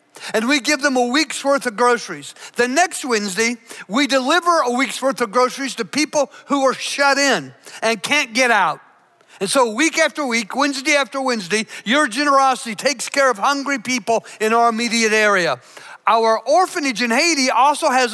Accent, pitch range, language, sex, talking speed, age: American, 215-275 Hz, English, male, 180 wpm, 50-69